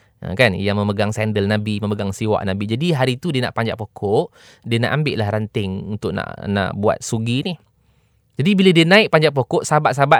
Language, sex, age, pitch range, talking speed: English, male, 20-39, 120-175 Hz, 195 wpm